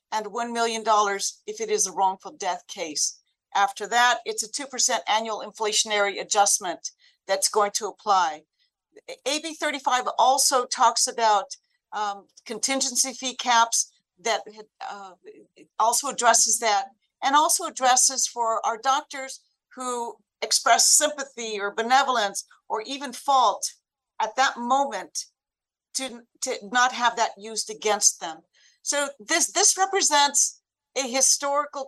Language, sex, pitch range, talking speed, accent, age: English, female, 210-265 Hz, 125 wpm, American, 60-79